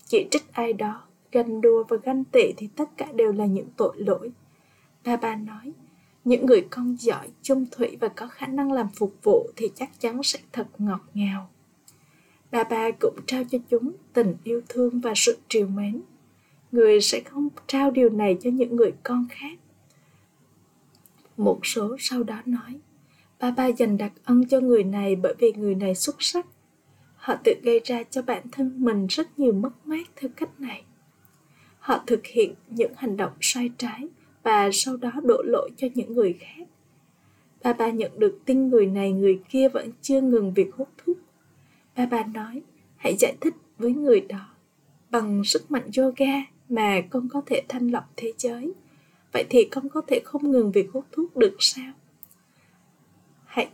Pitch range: 225-275 Hz